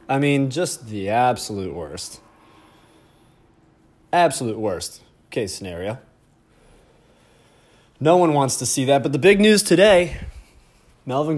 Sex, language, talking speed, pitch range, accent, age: male, English, 115 wpm, 120-165 Hz, American, 20-39